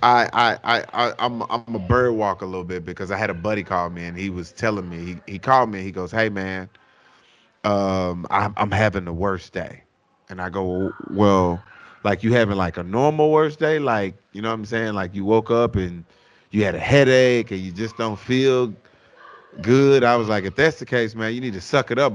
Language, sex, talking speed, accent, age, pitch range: English, male, 235 wpm, American, 30-49, 95-120 Hz